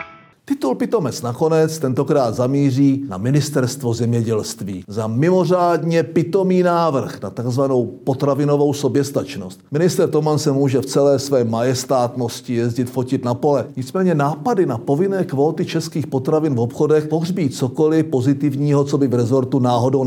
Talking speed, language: 135 wpm, Czech